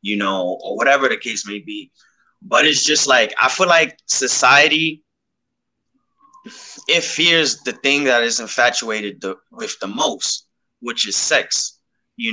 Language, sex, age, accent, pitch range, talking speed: English, male, 20-39, American, 115-160 Hz, 150 wpm